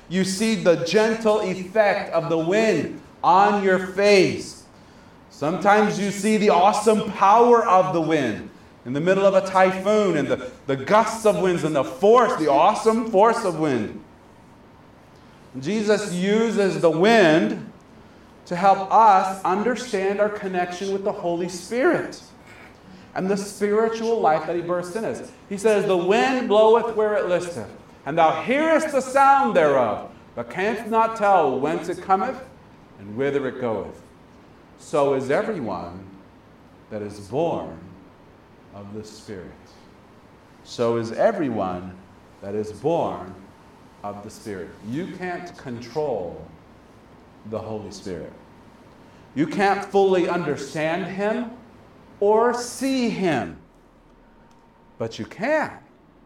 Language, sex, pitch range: Japanese, male, 145-215 Hz